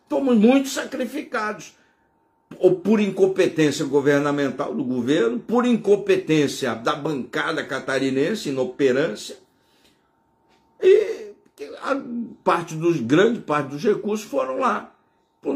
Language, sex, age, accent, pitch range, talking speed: Portuguese, male, 60-79, Brazilian, 165-245 Hz, 100 wpm